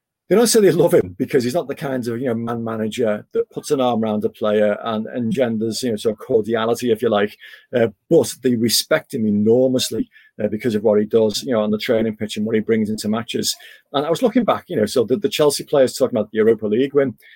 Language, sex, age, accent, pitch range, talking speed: English, male, 40-59, British, 110-135 Hz, 260 wpm